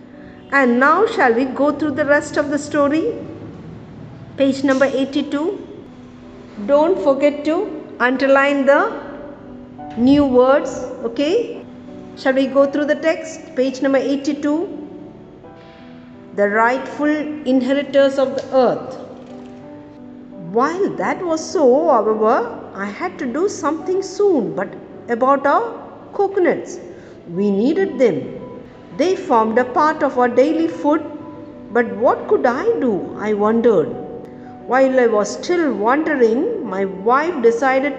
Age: 50-69